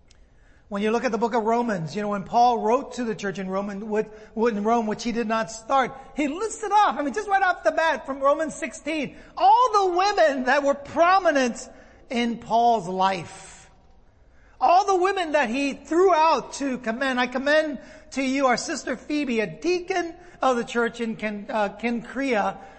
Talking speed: 185 wpm